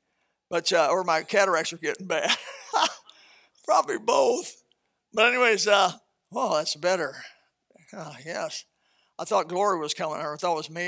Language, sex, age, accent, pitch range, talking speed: English, male, 60-79, American, 175-225 Hz, 160 wpm